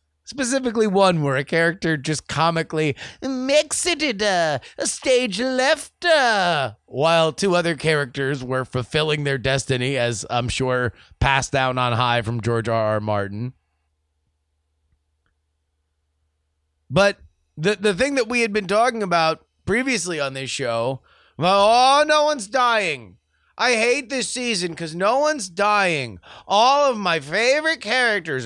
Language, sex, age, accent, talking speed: English, male, 30-49, American, 135 wpm